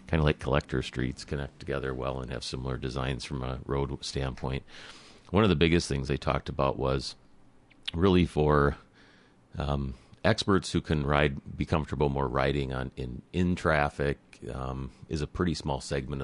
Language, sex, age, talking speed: English, male, 40-59, 170 wpm